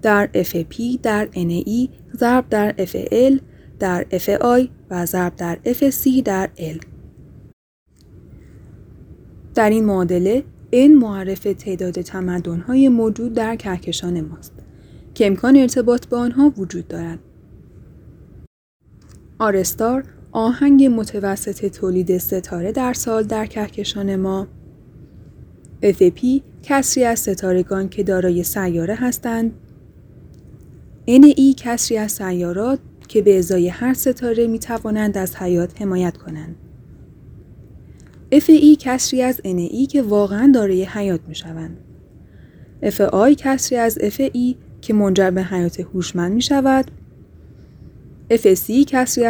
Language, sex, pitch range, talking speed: Persian, female, 185-245 Hz, 115 wpm